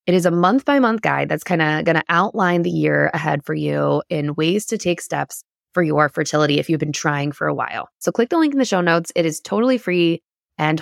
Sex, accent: female, American